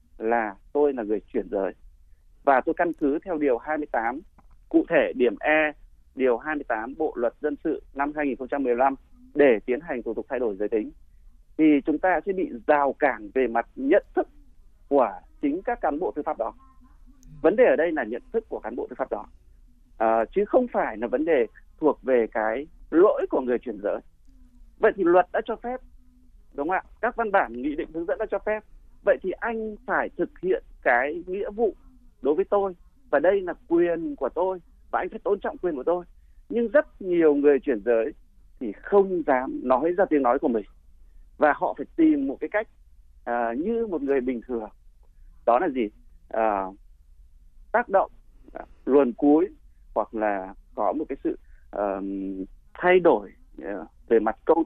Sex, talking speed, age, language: male, 195 wpm, 30-49, Vietnamese